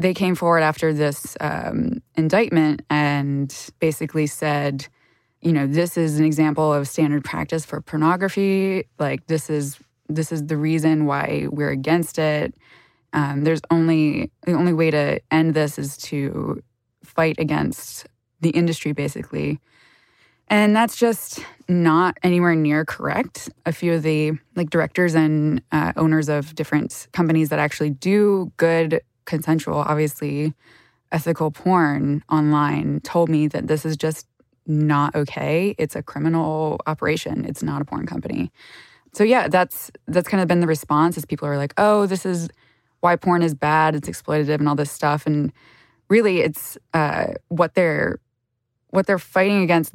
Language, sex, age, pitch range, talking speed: English, female, 20-39, 145-165 Hz, 155 wpm